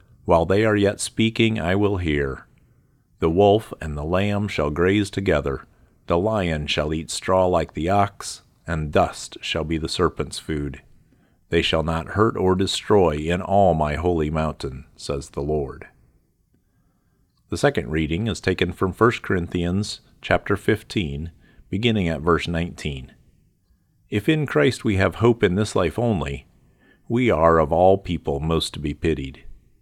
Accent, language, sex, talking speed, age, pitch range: American, English, male, 155 wpm, 50-69, 80-105 Hz